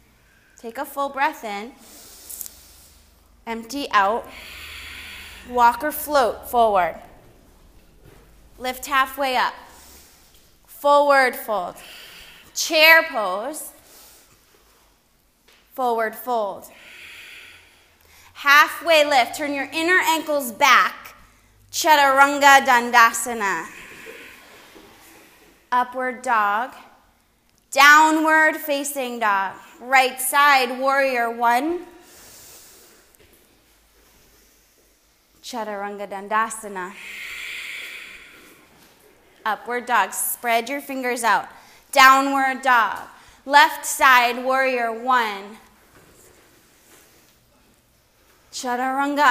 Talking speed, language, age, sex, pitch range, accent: 65 wpm, English, 20-39, female, 230-295 Hz, American